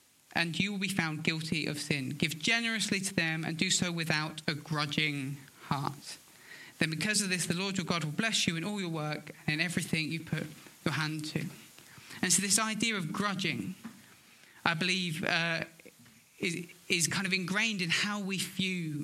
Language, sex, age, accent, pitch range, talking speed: English, male, 30-49, British, 165-195 Hz, 190 wpm